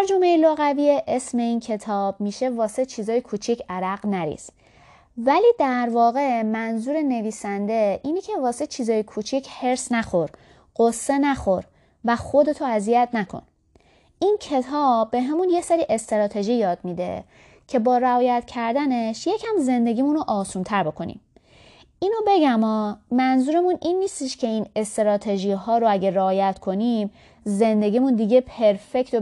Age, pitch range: 20-39, 205-280 Hz